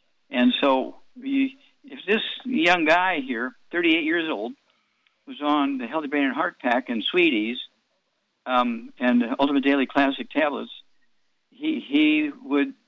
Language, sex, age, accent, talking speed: English, male, 50-69, American, 140 wpm